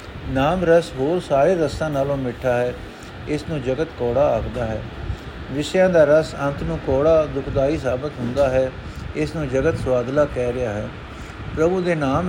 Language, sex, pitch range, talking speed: Punjabi, male, 125-150 Hz, 165 wpm